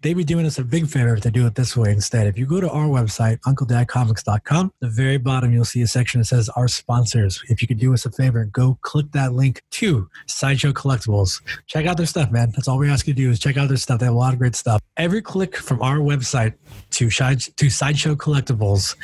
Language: English